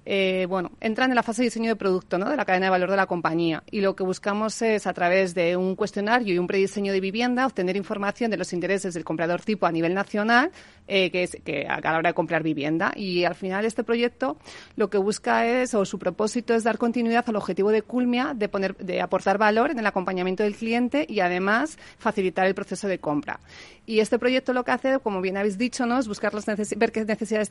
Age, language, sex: 40-59, Spanish, female